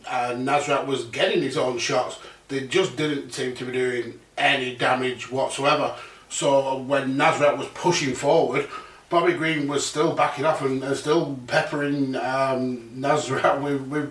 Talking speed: 160 wpm